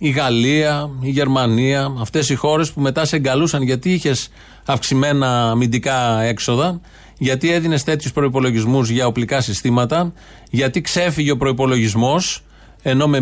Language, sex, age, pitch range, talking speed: Greek, male, 30-49, 130-165 Hz, 130 wpm